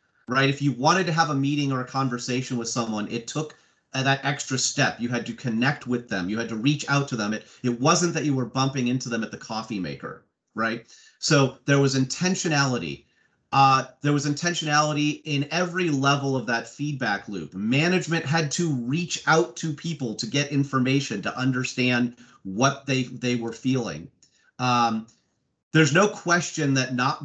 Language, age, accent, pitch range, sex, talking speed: English, 30-49, American, 120-150 Hz, male, 185 wpm